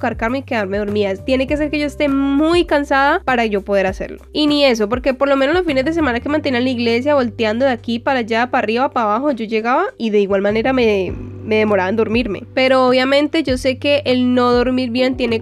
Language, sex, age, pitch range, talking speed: Spanish, female, 10-29, 220-270 Hz, 235 wpm